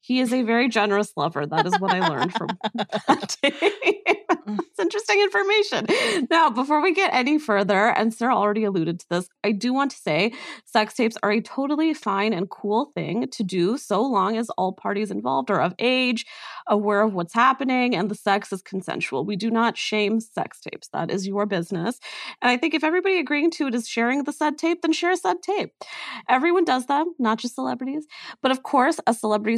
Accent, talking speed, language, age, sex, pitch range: American, 205 wpm, English, 30-49, female, 200-275 Hz